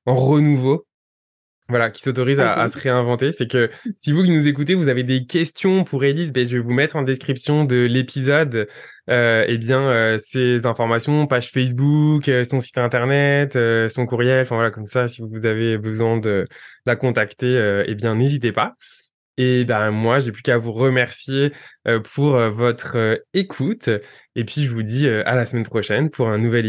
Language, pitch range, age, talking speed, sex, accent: French, 115-135 Hz, 20-39, 200 wpm, male, French